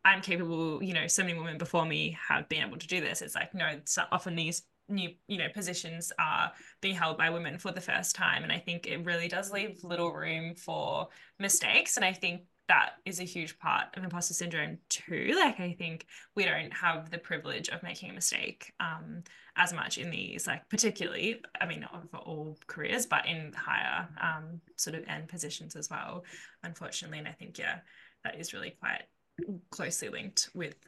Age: 20-39